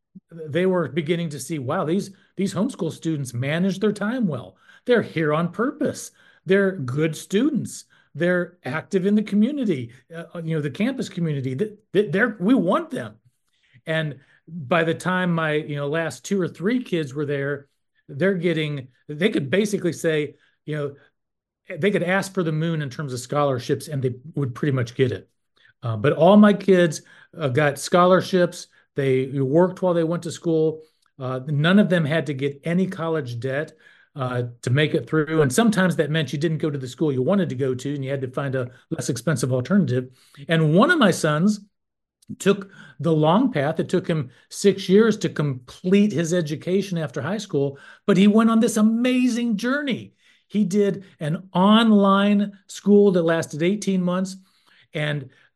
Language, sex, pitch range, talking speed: English, male, 145-195 Hz, 180 wpm